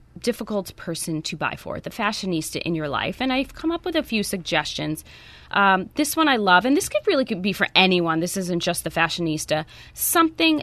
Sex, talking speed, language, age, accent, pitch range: female, 210 wpm, English, 20-39, American, 165-215 Hz